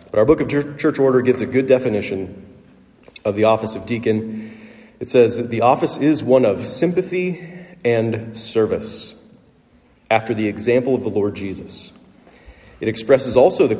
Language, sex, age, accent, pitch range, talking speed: English, male, 40-59, American, 105-125 Hz, 160 wpm